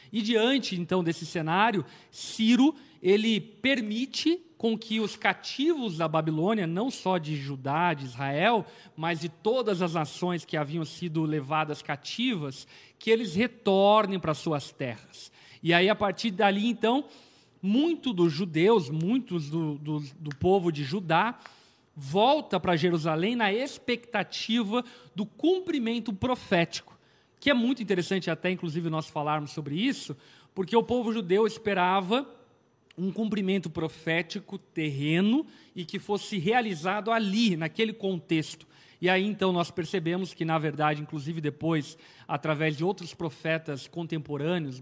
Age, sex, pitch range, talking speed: 40-59, male, 160-220 Hz, 135 wpm